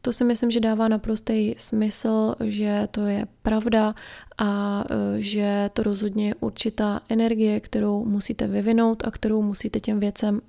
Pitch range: 205-225 Hz